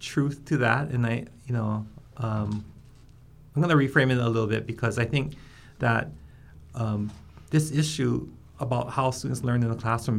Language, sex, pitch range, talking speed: English, male, 105-130 Hz, 175 wpm